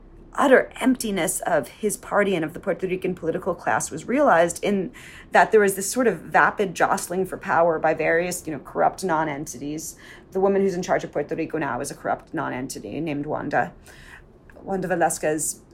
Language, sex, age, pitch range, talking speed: English, female, 30-49, 160-200 Hz, 185 wpm